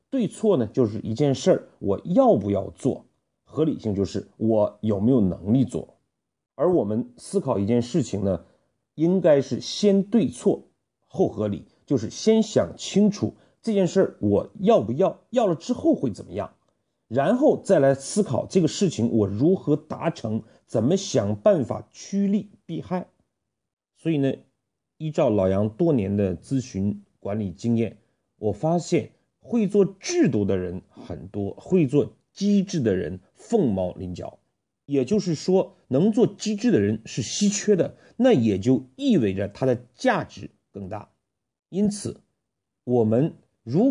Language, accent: Chinese, native